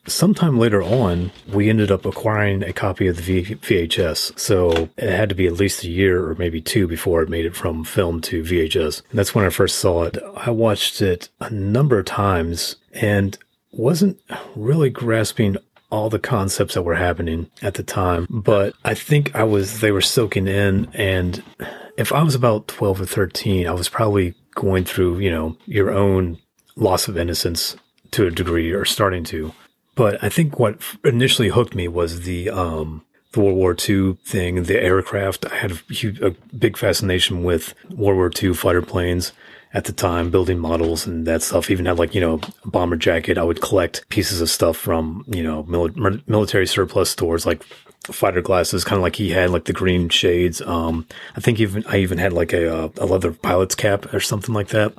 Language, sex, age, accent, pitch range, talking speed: English, male, 30-49, American, 85-105 Hz, 195 wpm